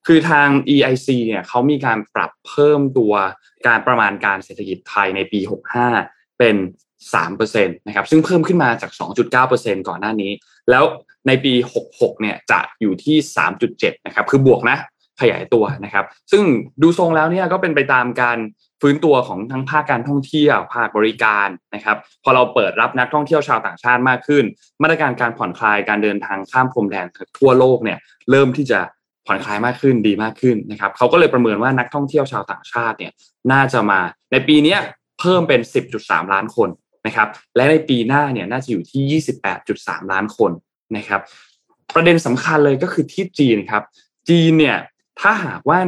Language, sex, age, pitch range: Thai, male, 20-39, 110-145 Hz